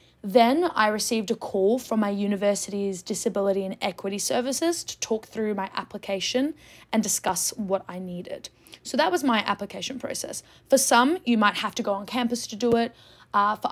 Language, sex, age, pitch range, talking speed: English, female, 10-29, 200-245 Hz, 185 wpm